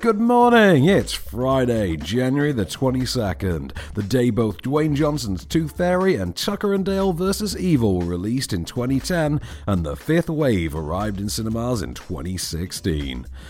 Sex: male